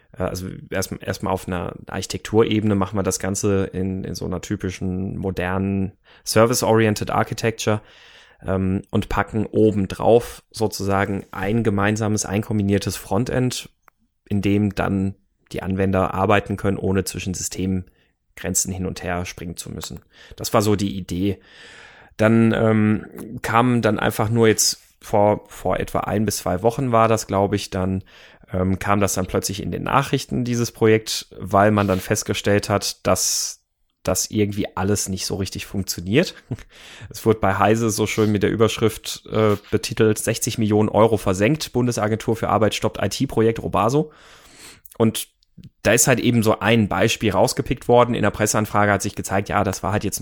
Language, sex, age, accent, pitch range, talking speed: German, male, 30-49, German, 95-110 Hz, 160 wpm